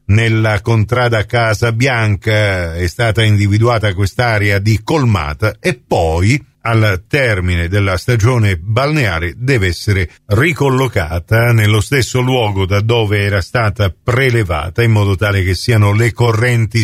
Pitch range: 105-165 Hz